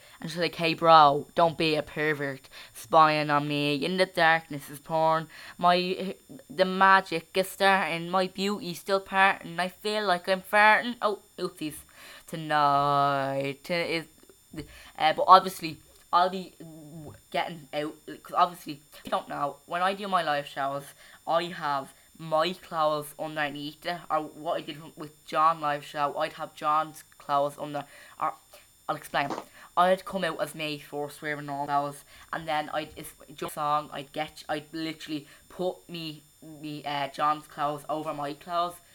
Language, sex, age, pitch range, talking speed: English, female, 10-29, 145-180 Hz, 155 wpm